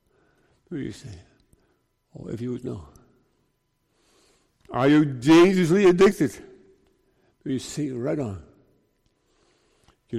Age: 60-79